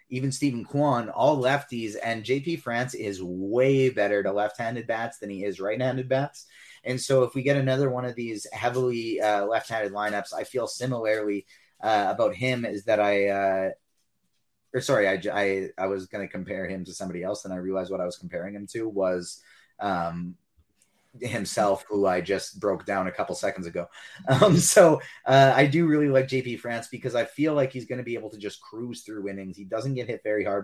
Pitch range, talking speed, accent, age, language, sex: 100-130 Hz, 205 wpm, American, 30-49, English, male